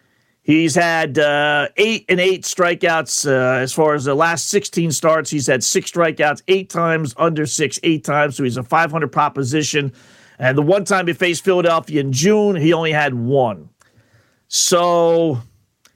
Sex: male